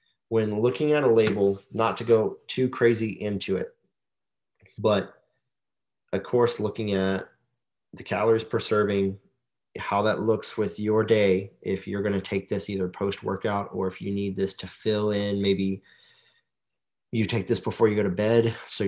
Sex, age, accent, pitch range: male, 30-49, American, 100-120 Hz